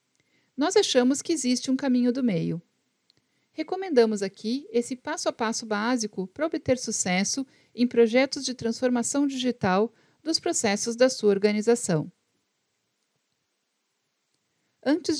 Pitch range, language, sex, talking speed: 205-270 Hz, Portuguese, female, 115 wpm